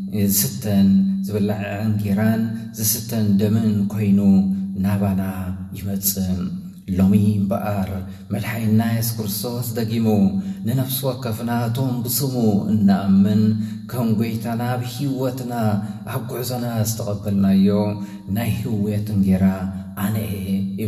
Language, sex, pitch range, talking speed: English, male, 95-115 Hz, 90 wpm